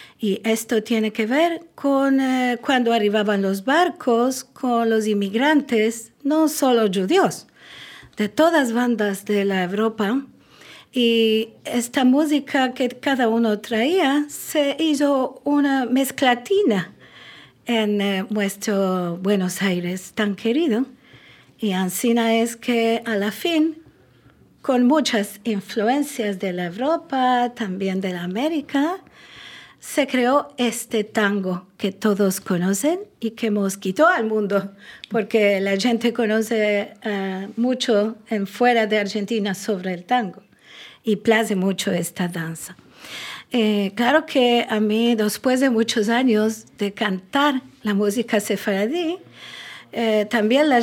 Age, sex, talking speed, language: 50-69, female, 125 wpm, French